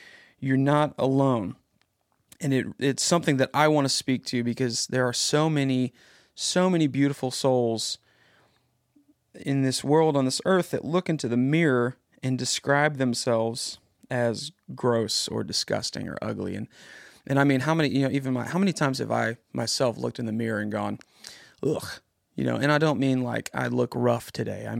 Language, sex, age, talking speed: English, male, 30-49, 185 wpm